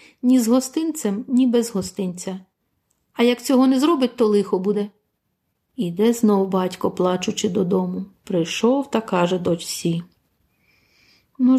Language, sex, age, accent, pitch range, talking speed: Ukrainian, female, 50-69, native, 185-255 Hz, 125 wpm